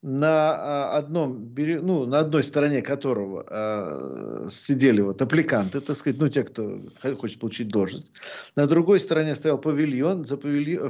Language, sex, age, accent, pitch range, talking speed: Russian, male, 50-69, native, 140-190 Hz, 130 wpm